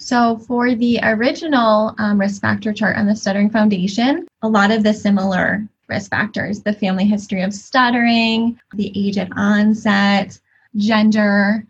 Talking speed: 150 wpm